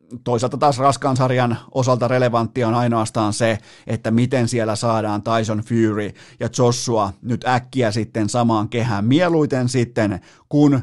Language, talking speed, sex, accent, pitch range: Finnish, 140 wpm, male, native, 110-135 Hz